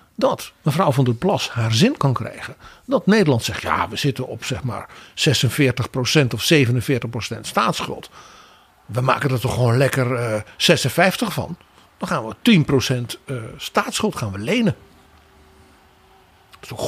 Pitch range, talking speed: 115-175 Hz, 155 wpm